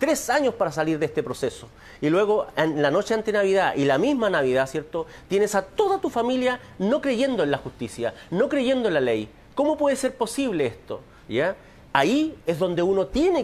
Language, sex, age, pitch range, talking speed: Spanish, male, 40-59, 195-300 Hz, 200 wpm